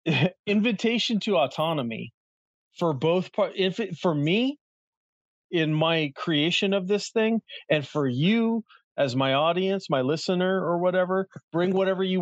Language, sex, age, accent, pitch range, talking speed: English, male, 40-59, American, 135-180 Hz, 140 wpm